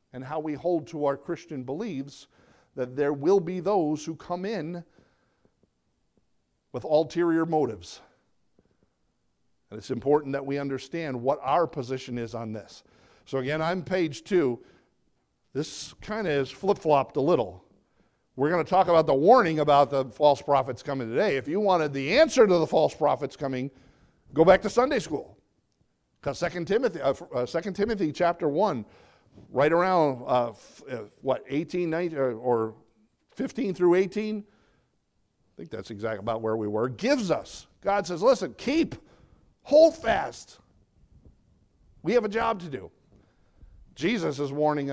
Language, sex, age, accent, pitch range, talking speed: English, male, 50-69, American, 130-175 Hz, 155 wpm